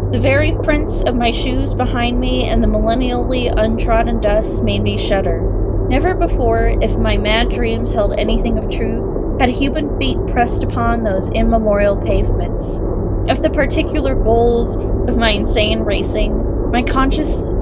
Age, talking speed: 10-29, 150 wpm